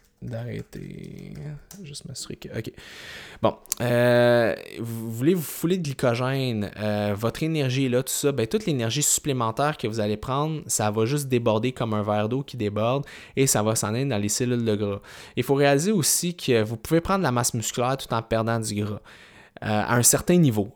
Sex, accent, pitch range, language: male, Canadian, 110-140 Hz, French